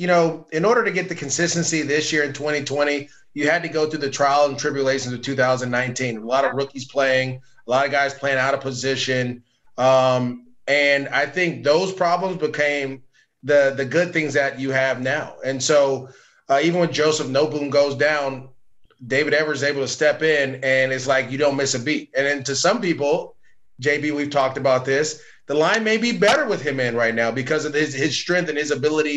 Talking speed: 210 wpm